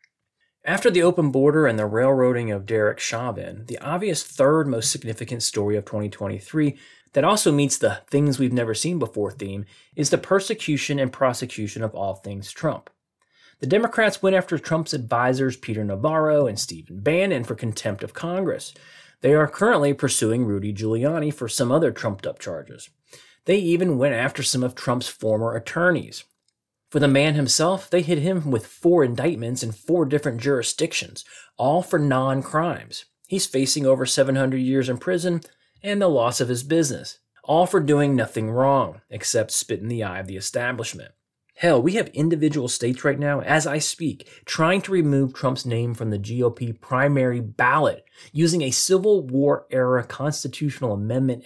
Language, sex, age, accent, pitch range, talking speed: English, male, 30-49, American, 115-155 Hz, 165 wpm